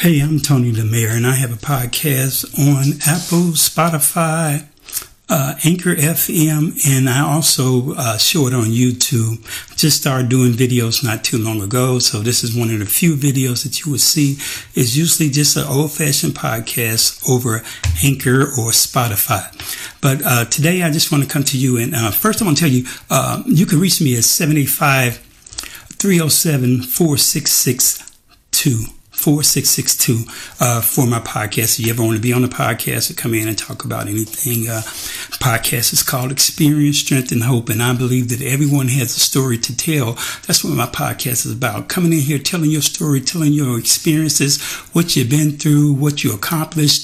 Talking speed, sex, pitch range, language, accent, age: 180 wpm, male, 120-155 Hz, English, American, 60-79